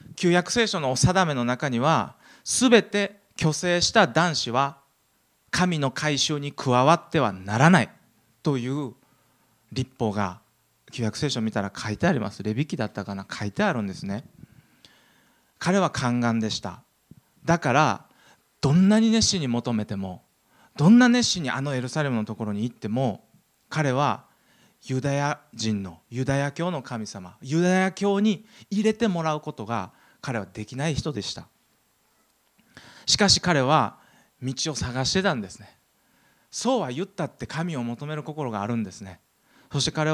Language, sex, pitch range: Japanese, male, 115-175 Hz